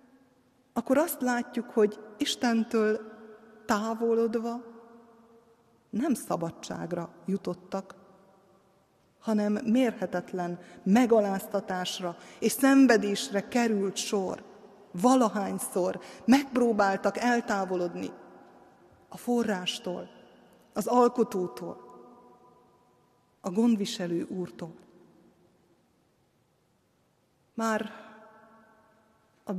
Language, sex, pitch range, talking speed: Hungarian, female, 200-235 Hz, 55 wpm